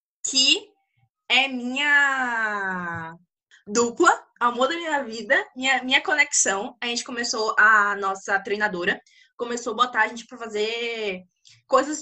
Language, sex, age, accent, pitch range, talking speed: Portuguese, female, 10-29, Brazilian, 220-310 Hz, 125 wpm